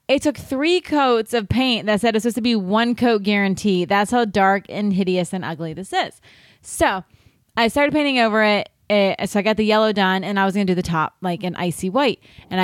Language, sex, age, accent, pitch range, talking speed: English, female, 20-39, American, 175-220 Hz, 235 wpm